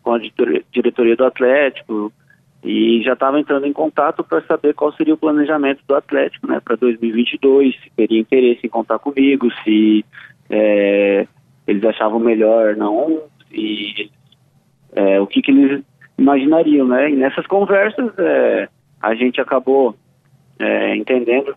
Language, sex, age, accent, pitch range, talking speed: Portuguese, male, 20-39, Brazilian, 125-145 Hz, 130 wpm